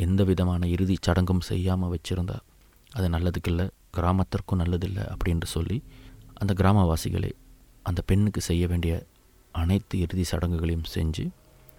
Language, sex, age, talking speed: Tamil, male, 30-49, 115 wpm